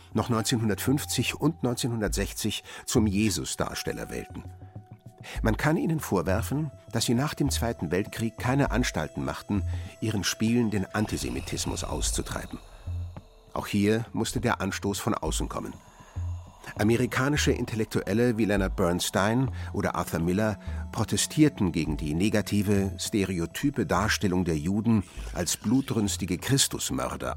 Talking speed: 115 wpm